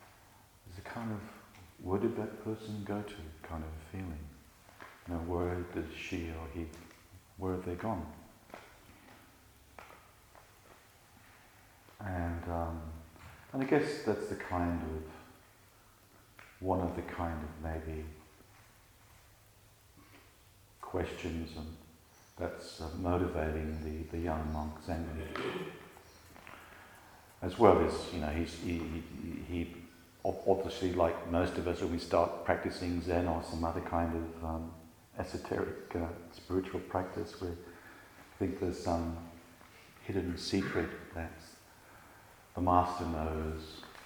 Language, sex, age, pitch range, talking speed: English, male, 50-69, 80-95 Hz, 115 wpm